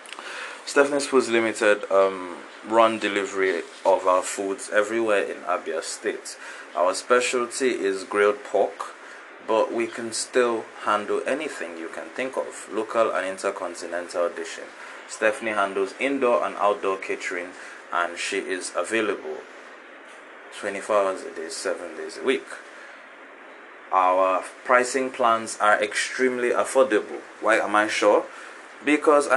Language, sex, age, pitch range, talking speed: English, male, 20-39, 95-130 Hz, 125 wpm